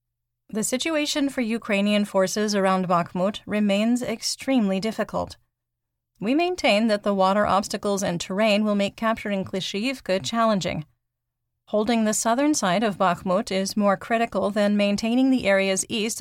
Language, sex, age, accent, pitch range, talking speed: English, female, 40-59, American, 185-215 Hz, 135 wpm